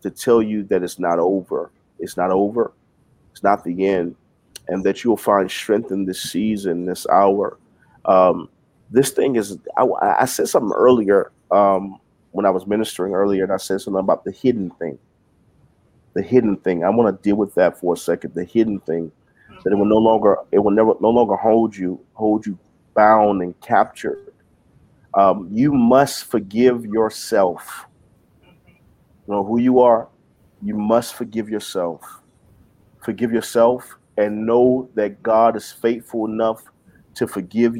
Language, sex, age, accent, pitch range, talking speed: English, male, 40-59, American, 95-120 Hz, 165 wpm